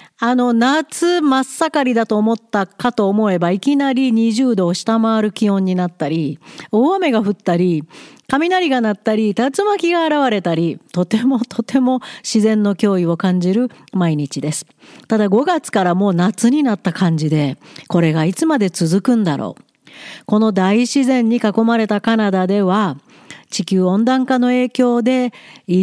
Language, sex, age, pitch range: Japanese, female, 40-59, 185-255 Hz